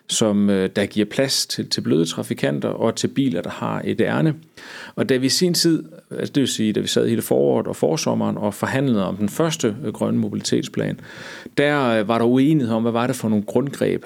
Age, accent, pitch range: 40-59, native, 115-145 Hz